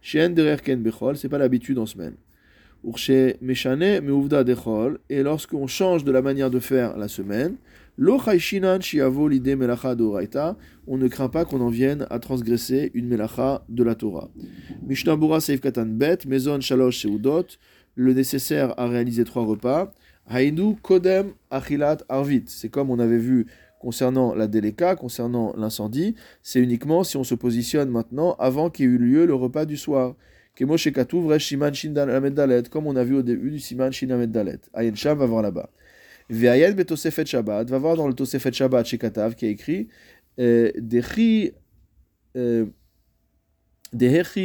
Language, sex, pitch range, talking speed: French, male, 120-145 Hz, 130 wpm